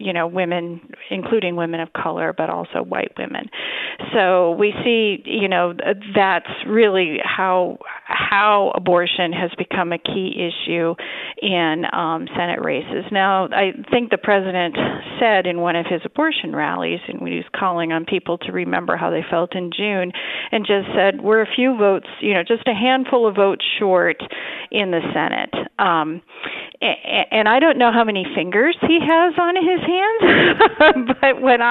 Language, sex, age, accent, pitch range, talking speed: English, female, 40-59, American, 170-225 Hz, 170 wpm